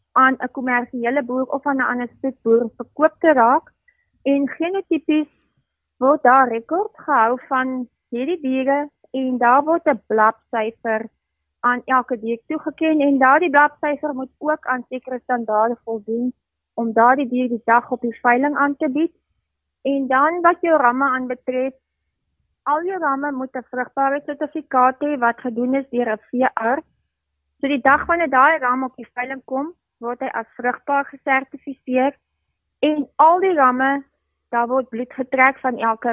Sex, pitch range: female, 240-285 Hz